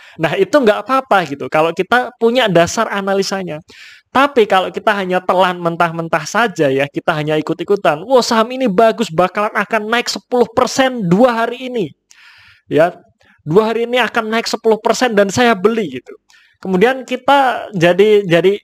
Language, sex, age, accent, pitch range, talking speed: Indonesian, male, 20-39, native, 170-220 Hz, 150 wpm